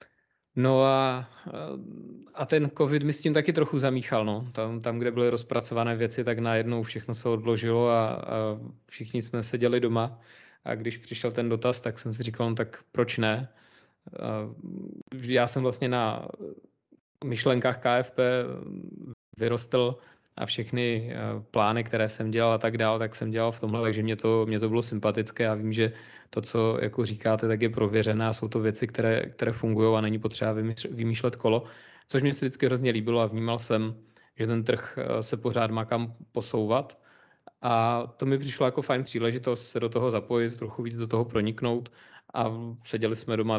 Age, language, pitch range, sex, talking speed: 20-39, Czech, 110-120 Hz, male, 175 wpm